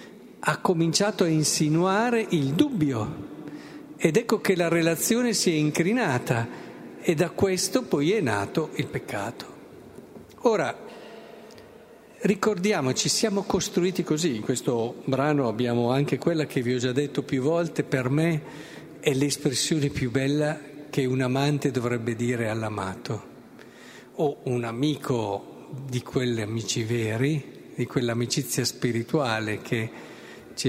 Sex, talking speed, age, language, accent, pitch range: male, 125 wpm, 50-69, Italian, native, 125-160 Hz